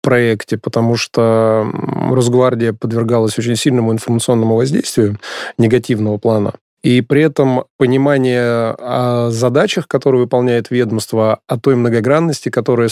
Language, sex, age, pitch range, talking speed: Russian, male, 20-39, 115-130 Hz, 110 wpm